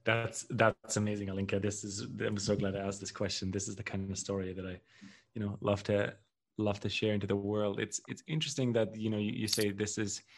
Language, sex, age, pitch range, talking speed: English, male, 20-39, 100-110 Hz, 245 wpm